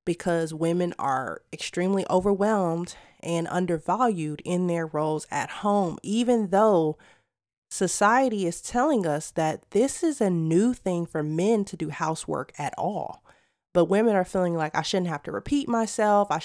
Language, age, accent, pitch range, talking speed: English, 30-49, American, 160-205 Hz, 155 wpm